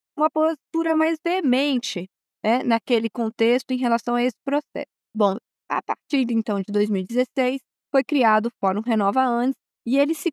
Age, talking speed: 20-39, 155 wpm